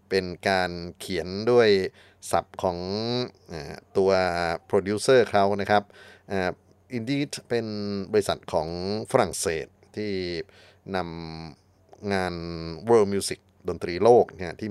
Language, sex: Thai, male